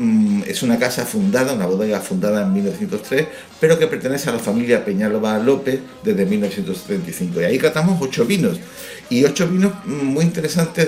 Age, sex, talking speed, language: 60-79, male, 160 wpm, Spanish